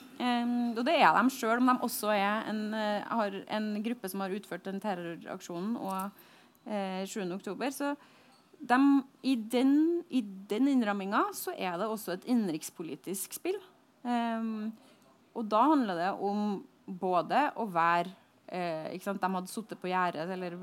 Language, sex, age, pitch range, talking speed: English, female, 30-49, 185-245 Hz, 160 wpm